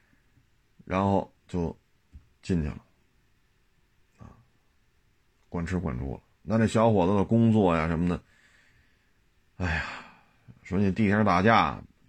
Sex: male